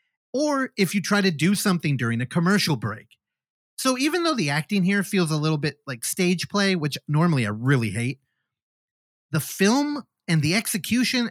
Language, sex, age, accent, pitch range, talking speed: English, male, 30-49, American, 130-185 Hz, 180 wpm